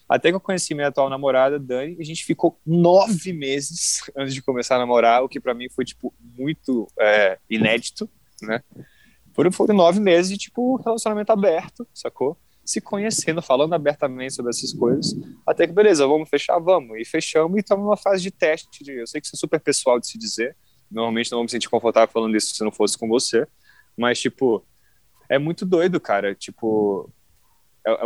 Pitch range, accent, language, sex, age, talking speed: 115-170 Hz, Brazilian, Portuguese, male, 20-39, 190 wpm